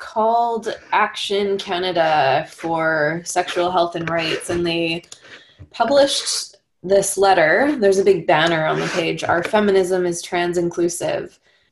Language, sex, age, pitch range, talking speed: English, female, 20-39, 170-185 Hz, 130 wpm